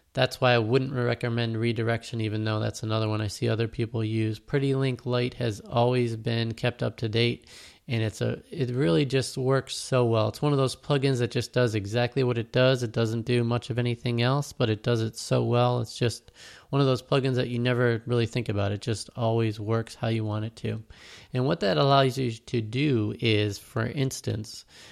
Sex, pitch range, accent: male, 110-125 Hz, American